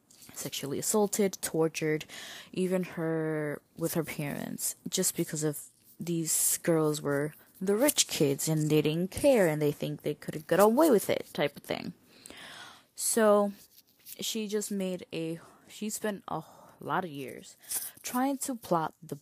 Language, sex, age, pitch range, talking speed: English, female, 20-39, 160-210 Hz, 150 wpm